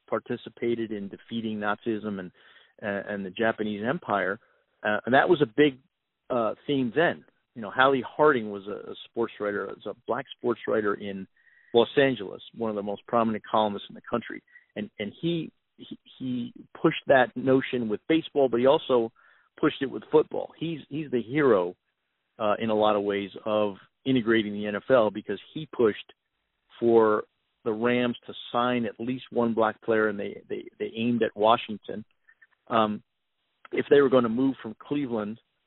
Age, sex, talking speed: 50-69, male, 175 wpm